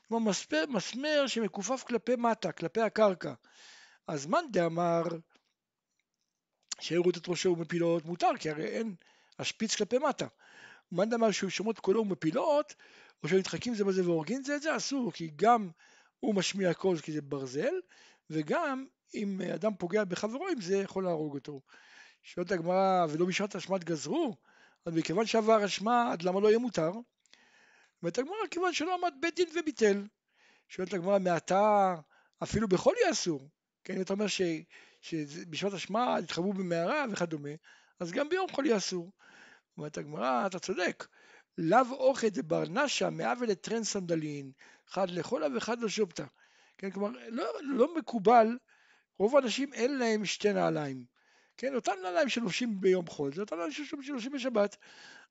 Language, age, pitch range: Hebrew, 60-79, 175-250 Hz